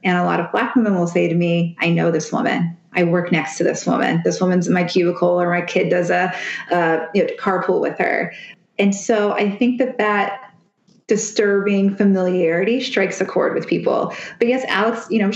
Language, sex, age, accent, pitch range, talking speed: English, female, 20-39, American, 185-215 Hz, 210 wpm